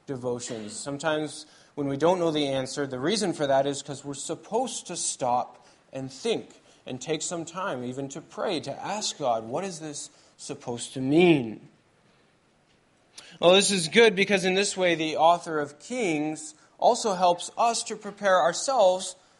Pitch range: 145-190 Hz